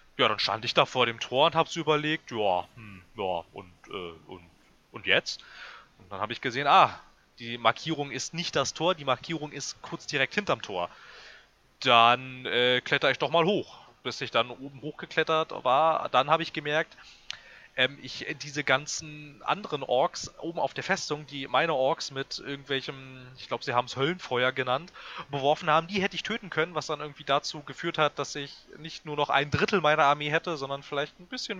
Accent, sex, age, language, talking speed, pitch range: German, male, 30-49, German, 195 wpm, 135-165 Hz